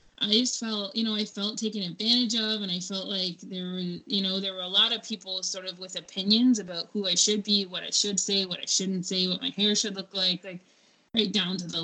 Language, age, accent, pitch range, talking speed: English, 20-39, American, 180-210 Hz, 265 wpm